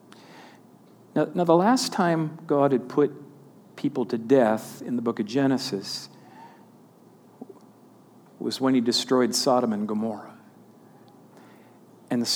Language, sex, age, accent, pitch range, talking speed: English, male, 50-69, American, 120-155 Hz, 110 wpm